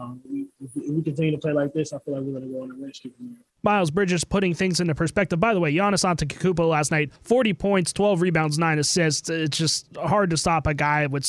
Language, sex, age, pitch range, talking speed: English, male, 20-39, 160-190 Hz, 260 wpm